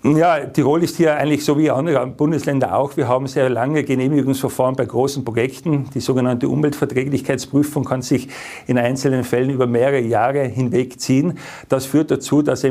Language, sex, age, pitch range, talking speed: German, male, 50-69, 120-140 Hz, 165 wpm